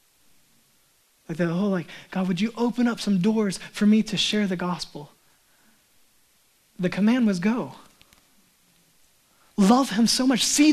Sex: male